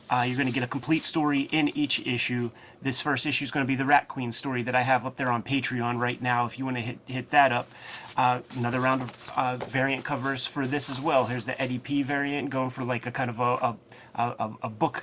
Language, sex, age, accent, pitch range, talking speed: English, male, 30-49, American, 120-140 Hz, 265 wpm